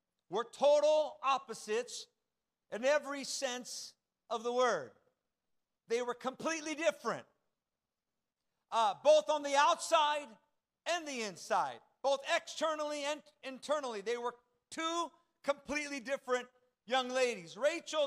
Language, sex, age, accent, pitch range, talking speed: English, male, 50-69, American, 245-295 Hz, 110 wpm